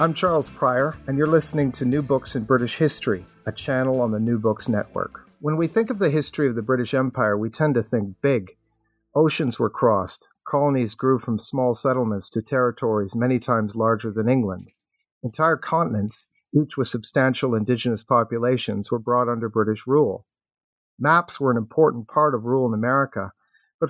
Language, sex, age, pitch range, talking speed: English, male, 50-69, 110-140 Hz, 180 wpm